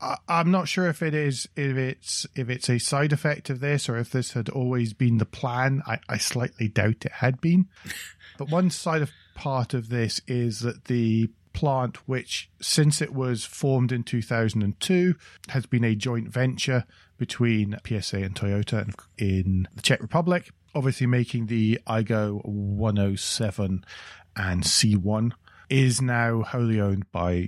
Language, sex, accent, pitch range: English, male, British, 95-130 Hz